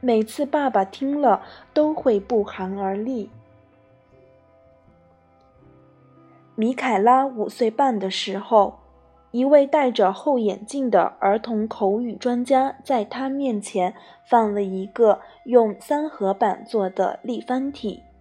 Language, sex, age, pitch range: Chinese, female, 20-39, 195-275 Hz